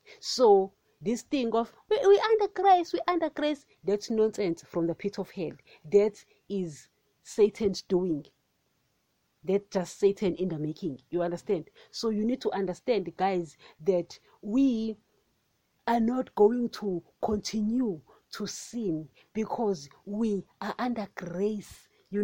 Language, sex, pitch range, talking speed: English, female, 175-220 Hz, 140 wpm